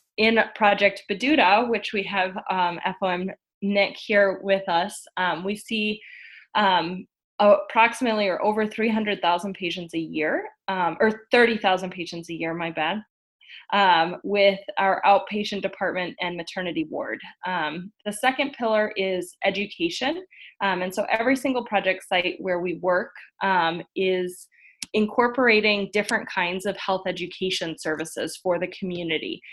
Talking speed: 135 wpm